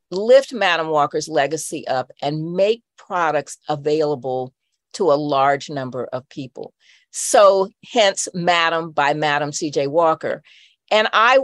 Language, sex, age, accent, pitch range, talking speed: English, female, 50-69, American, 150-210 Hz, 125 wpm